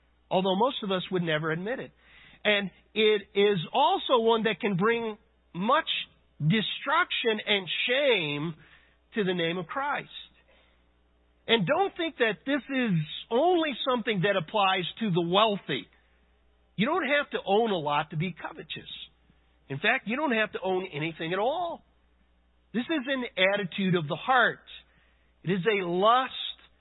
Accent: American